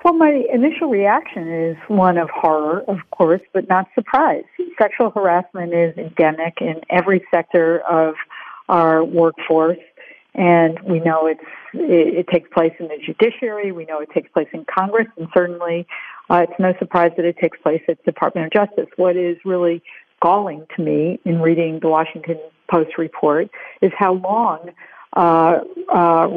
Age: 50-69